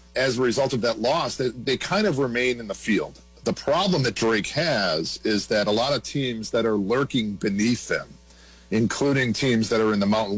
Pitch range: 100-125 Hz